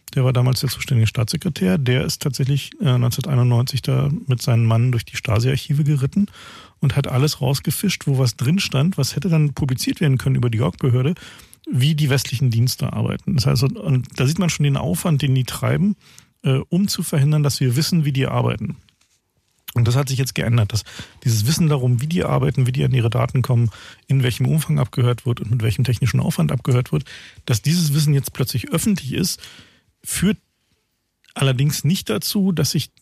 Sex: male